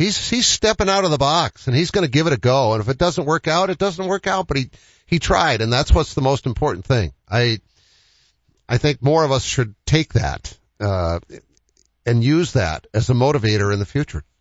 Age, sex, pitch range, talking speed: 50-69, male, 105-145 Hz, 230 wpm